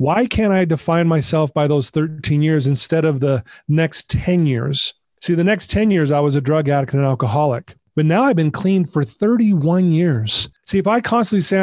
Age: 30-49